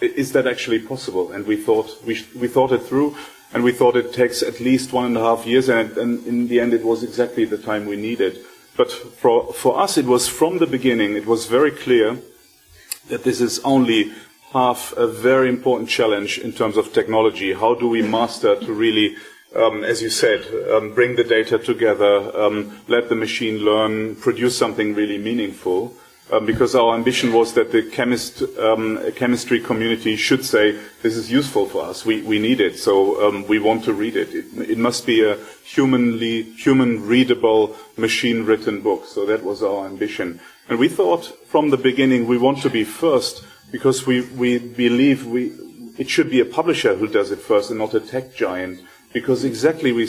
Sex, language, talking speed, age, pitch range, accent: male, English, 195 wpm, 30-49, 115-145 Hz, German